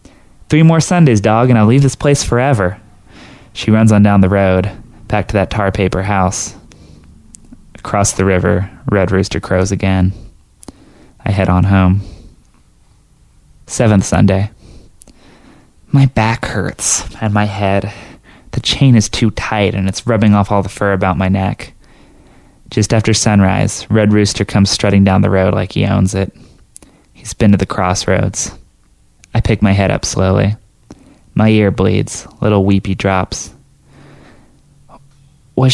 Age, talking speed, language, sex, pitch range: 20-39, 150 wpm, English, male, 95-110 Hz